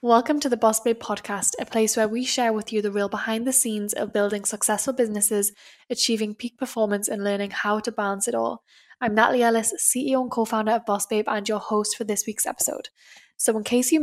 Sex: female